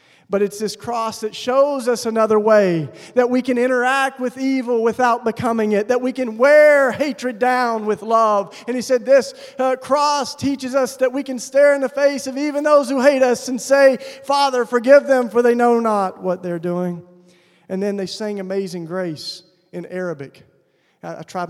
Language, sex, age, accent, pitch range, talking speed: English, male, 40-59, American, 195-270 Hz, 195 wpm